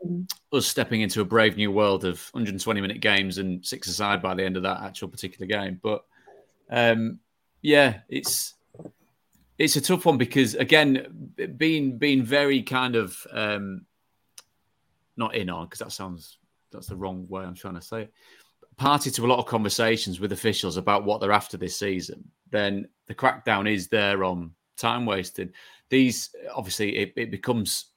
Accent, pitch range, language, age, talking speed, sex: British, 95-115 Hz, English, 30-49, 170 wpm, male